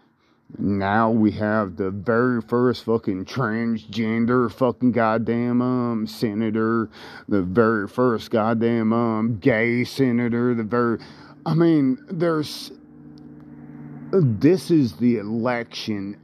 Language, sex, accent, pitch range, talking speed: English, male, American, 95-120 Hz, 105 wpm